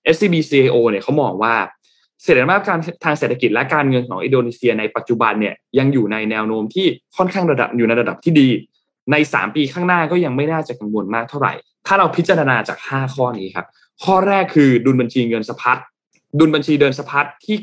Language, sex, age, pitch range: Thai, male, 20-39, 120-160 Hz